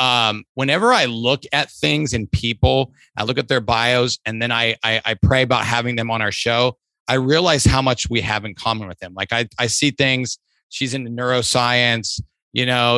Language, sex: English, male